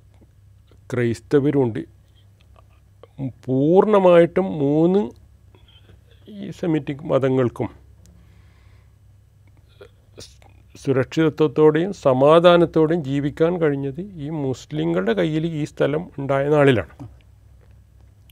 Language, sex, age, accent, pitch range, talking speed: Malayalam, male, 40-59, native, 100-155 Hz, 55 wpm